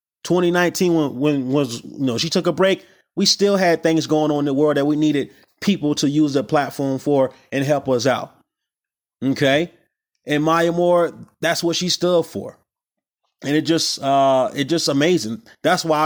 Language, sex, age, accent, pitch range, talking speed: English, male, 30-49, American, 130-160 Hz, 185 wpm